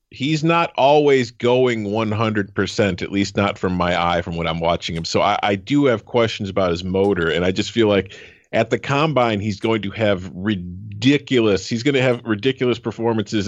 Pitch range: 90-120 Hz